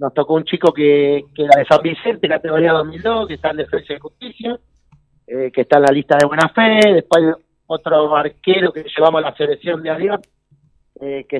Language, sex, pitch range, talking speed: Spanish, male, 145-170 Hz, 210 wpm